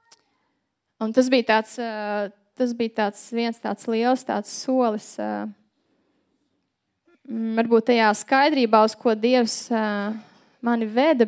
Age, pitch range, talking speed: 20-39, 220-265 Hz, 105 wpm